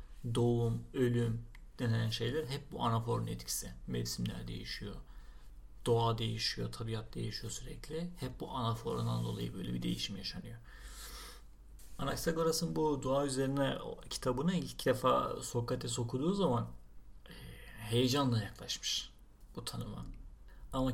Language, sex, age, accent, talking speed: Turkish, male, 40-59, native, 110 wpm